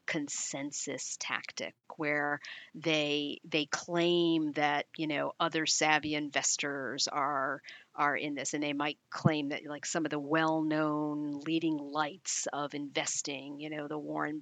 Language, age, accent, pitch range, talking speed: English, 40-59, American, 150-180 Hz, 140 wpm